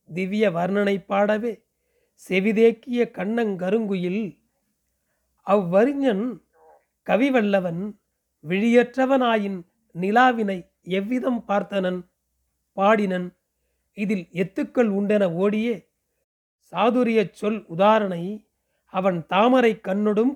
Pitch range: 185-230 Hz